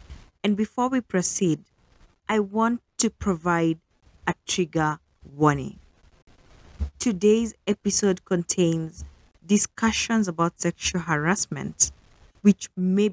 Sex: female